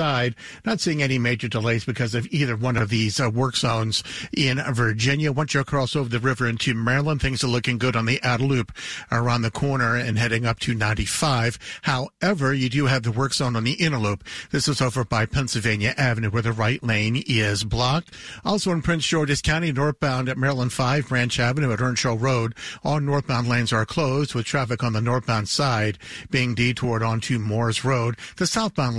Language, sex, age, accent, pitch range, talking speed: English, male, 50-69, American, 115-140 Hz, 195 wpm